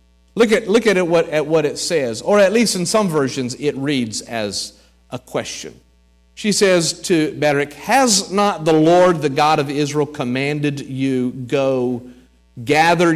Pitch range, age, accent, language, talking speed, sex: 115-165 Hz, 50-69, American, English, 170 wpm, male